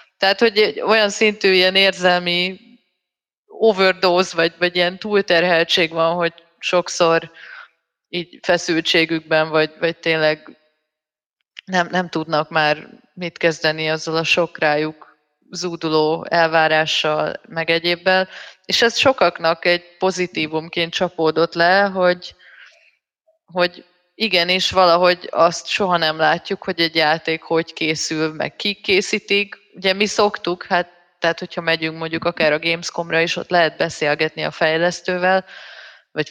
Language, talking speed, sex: Hungarian, 120 wpm, female